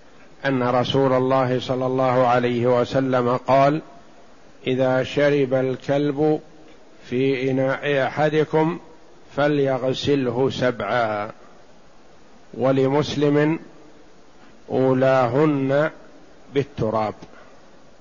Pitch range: 130-145 Hz